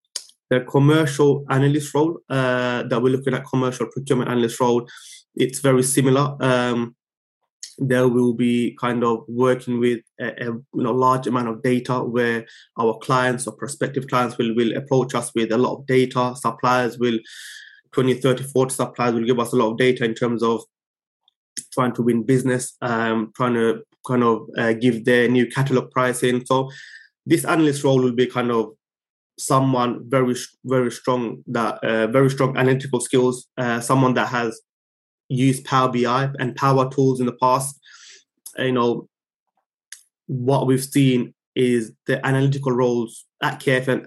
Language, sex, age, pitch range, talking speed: English, male, 20-39, 120-130 Hz, 165 wpm